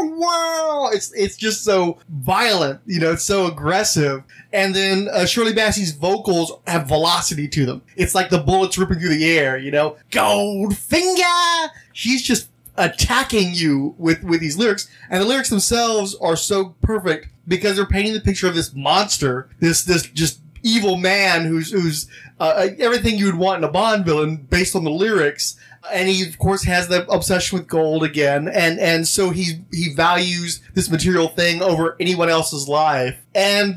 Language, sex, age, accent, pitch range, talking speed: English, male, 30-49, American, 160-200 Hz, 175 wpm